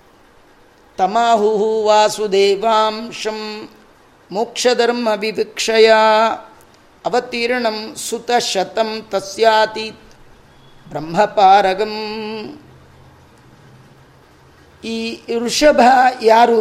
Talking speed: 35 wpm